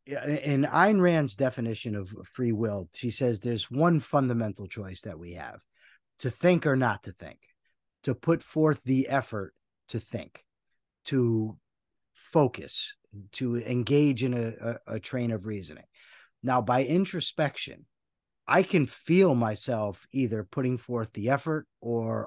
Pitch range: 115-145 Hz